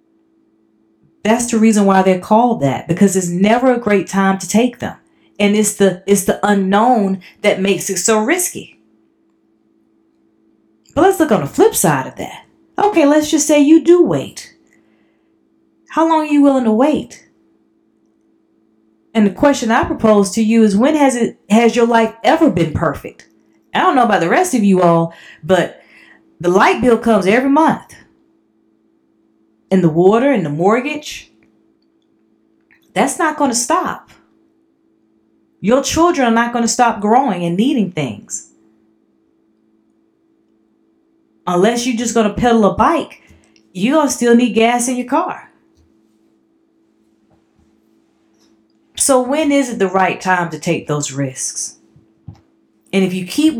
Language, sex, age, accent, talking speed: English, female, 30-49, American, 155 wpm